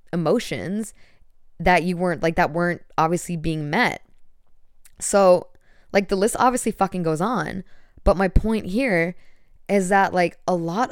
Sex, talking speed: female, 150 wpm